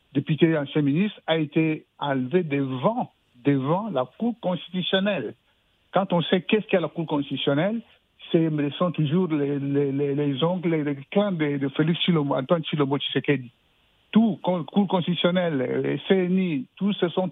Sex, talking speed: male, 140 wpm